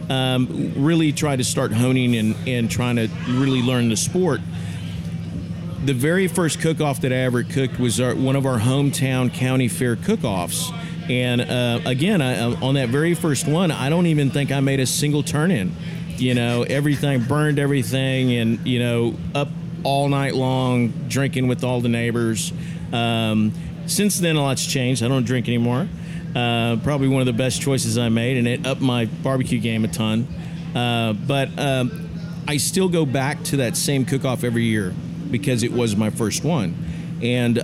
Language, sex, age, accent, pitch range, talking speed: English, male, 40-59, American, 120-150 Hz, 175 wpm